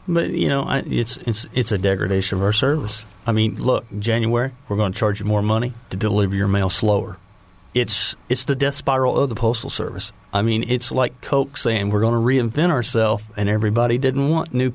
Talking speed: 215 wpm